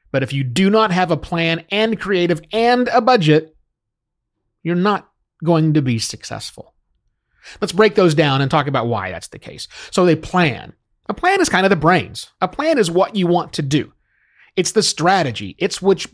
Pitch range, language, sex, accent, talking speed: 135-200 Hz, English, male, American, 195 wpm